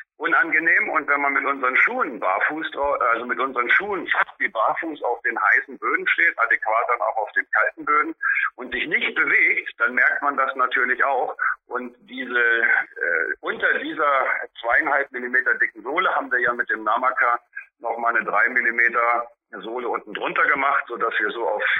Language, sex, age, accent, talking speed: German, male, 50-69, German, 180 wpm